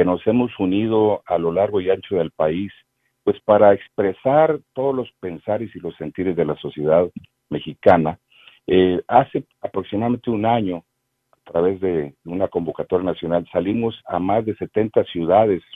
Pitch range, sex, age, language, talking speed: 90-125 Hz, male, 50-69, Spanish, 150 wpm